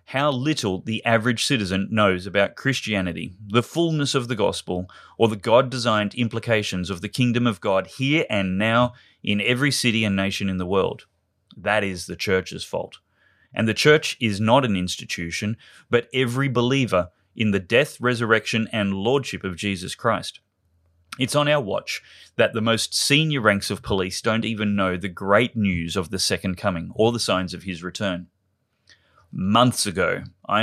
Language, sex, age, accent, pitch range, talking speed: English, male, 30-49, Australian, 95-125 Hz, 170 wpm